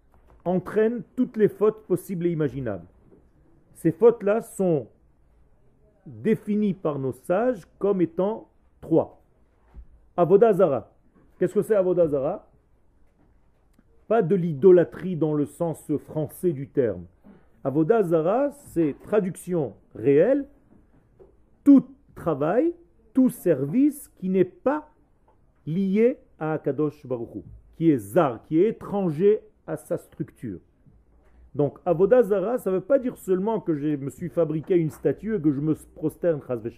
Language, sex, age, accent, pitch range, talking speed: French, male, 40-59, French, 150-215 Hz, 120 wpm